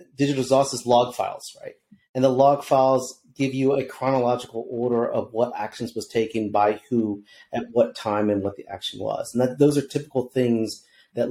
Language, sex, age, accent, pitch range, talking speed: English, male, 40-59, American, 115-140 Hz, 190 wpm